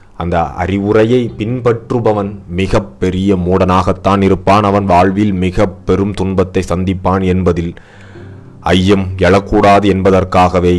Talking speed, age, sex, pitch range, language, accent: 95 wpm, 30-49, male, 90-100 Hz, Tamil, native